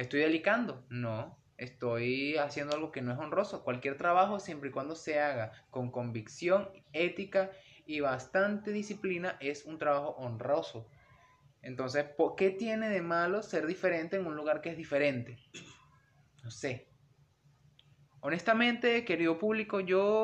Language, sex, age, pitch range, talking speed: Spanish, male, 20-39, 140-180 Hz, 140 wpm